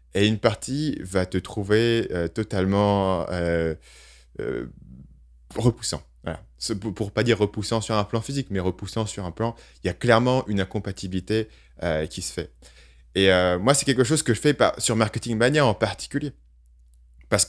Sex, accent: male, French